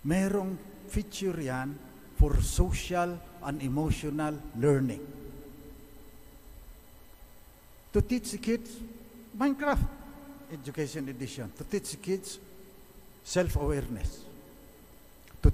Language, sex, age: English, male, 50-69